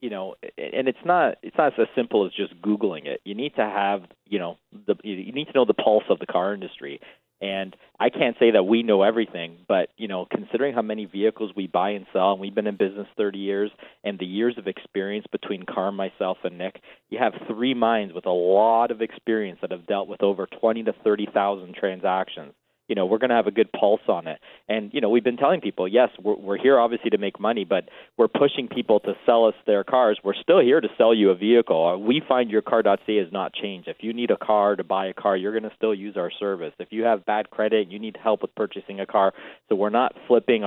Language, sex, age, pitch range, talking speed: English, male, 40-59, 100-115 Hz, 245 wpm